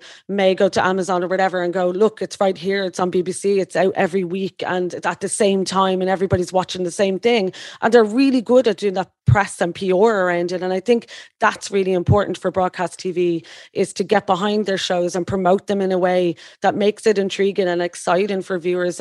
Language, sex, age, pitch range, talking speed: English, female, 30-49, 185-215 Hz, 225 wpm